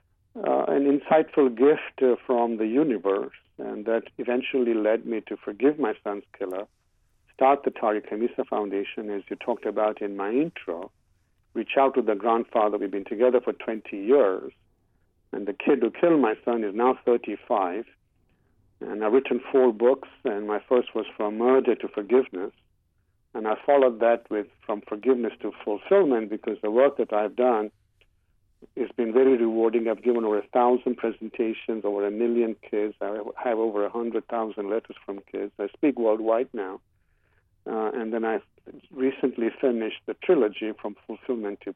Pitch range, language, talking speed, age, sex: 100-120 Hz, English, 165 wpm, 50-69, male